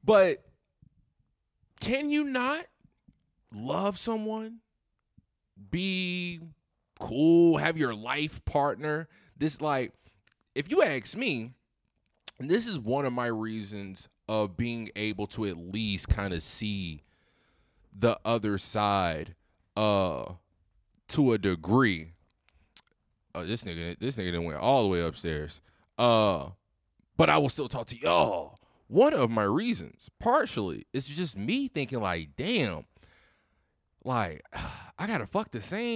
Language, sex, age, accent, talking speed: English, male, 30-49, American, 125 wpm